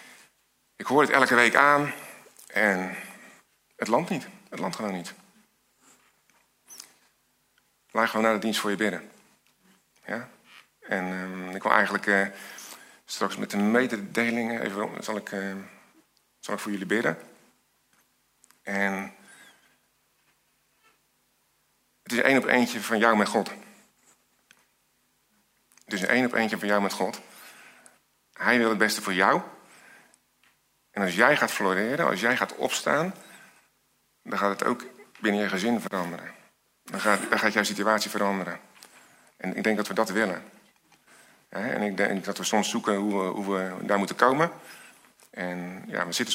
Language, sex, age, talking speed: Dutch, male, 50-69, 150 wpm